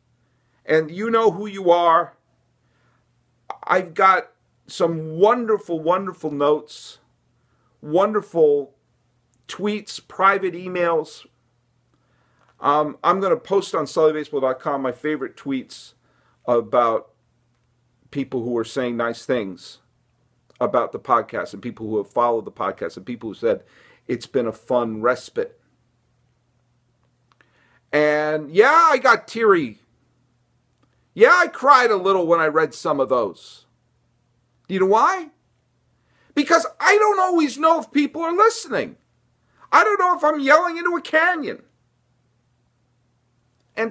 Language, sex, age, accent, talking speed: English, male, 50-69, American, 125 wpm